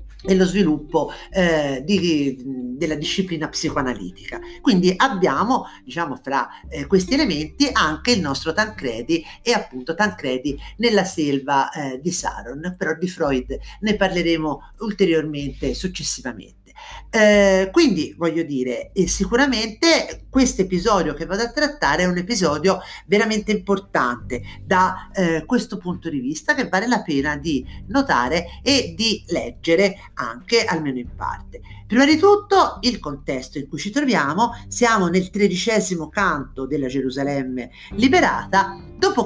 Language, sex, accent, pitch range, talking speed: Italian, male, native, 150-225 Hz, 130 wpm